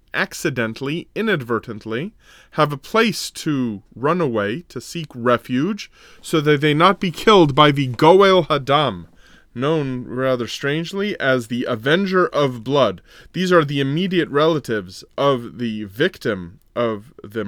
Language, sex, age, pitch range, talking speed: English, male, 20-39, 115-160 Hz, 135 wpm